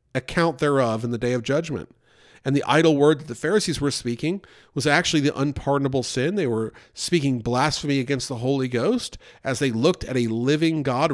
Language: English